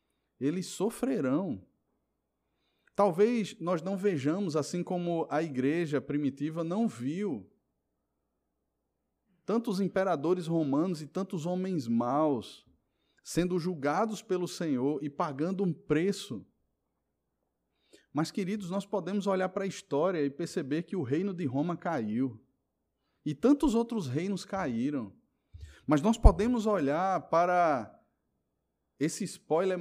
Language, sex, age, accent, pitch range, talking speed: Portuguese, male, 20-39, Brazilian, 120-185 Hz, 115 wpm